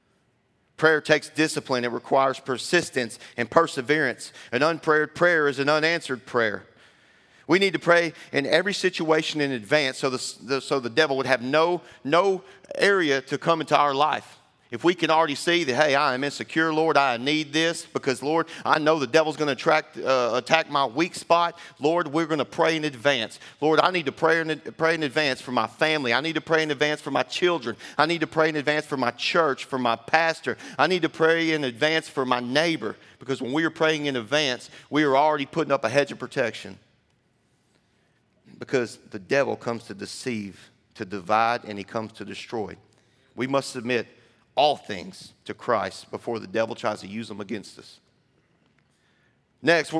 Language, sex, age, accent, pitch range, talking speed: English, male, 40-59, American, 125-160 Hz, 190 wpm